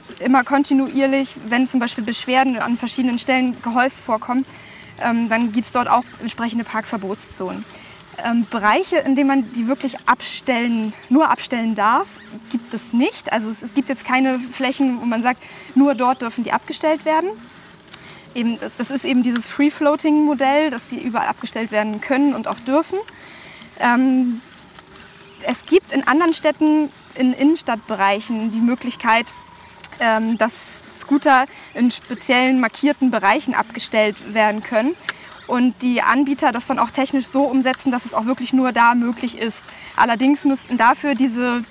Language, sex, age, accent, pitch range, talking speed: German, female, 10-29, German, 230-270 Hz, 155 wpm